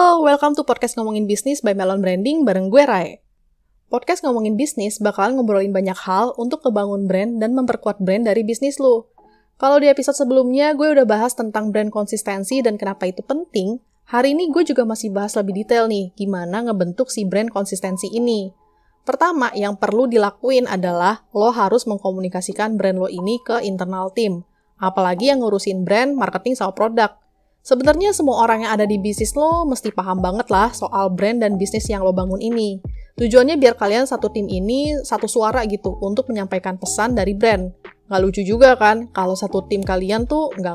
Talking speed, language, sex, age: 180 wpm, Indonesian, female, 20-39